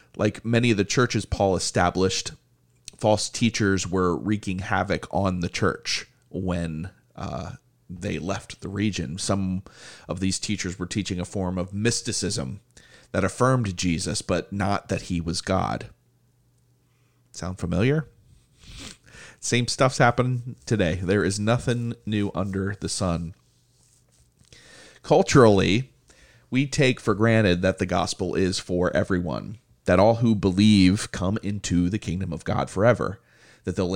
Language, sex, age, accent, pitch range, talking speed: English, male, 30-49, American, 95-120 Hz, 140 wpm